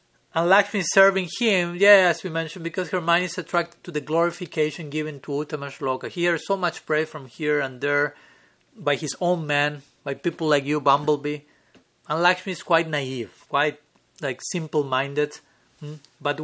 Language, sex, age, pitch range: English, male, 30-49, 135-170 Hz